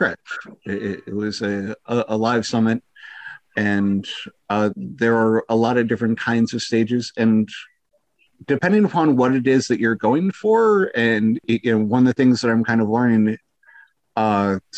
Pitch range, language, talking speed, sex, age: 110-125 Hz, English, 160 wpm, male, 50-69